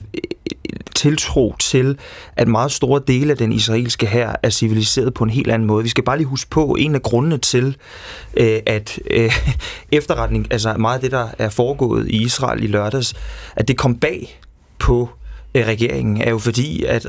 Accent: native